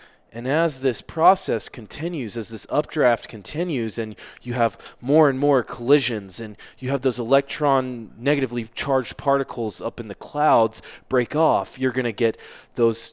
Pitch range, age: 105-130 Hz, 20-39